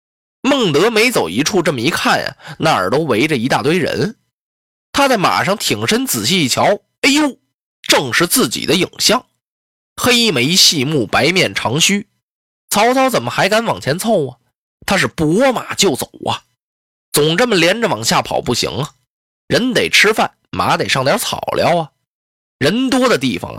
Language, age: Chinese, 20-39